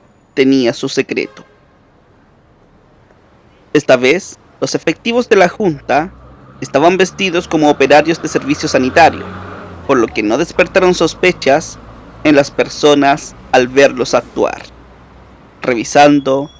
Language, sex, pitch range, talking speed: Spanish, male, 135-175 Hz, 110 wpm